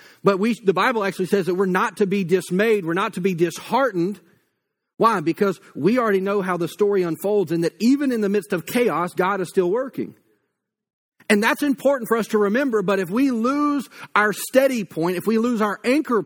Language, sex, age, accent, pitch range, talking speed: English, male, 40-59, American, 175-215 Hz, 210 wpm